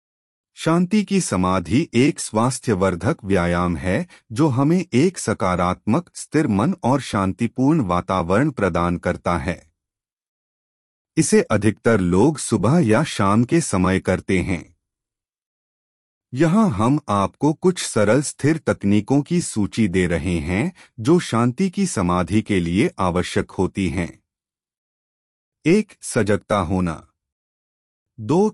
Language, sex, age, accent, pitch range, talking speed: Hindi, male, 30-49, native, 90-145 Hz, 115 wpm